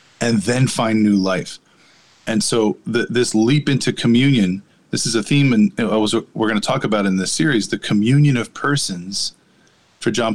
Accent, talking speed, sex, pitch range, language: American, 170 wpm, male, 105-130 Hz, English